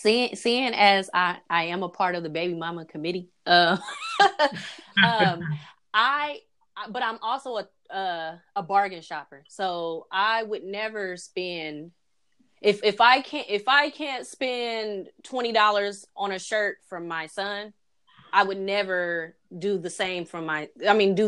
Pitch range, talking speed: 180-235 Hz, 160 wpm